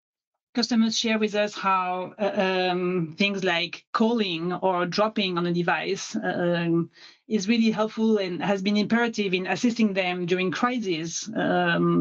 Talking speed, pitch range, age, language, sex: 150 wpm, 185-220 Hz, 30-49, English, female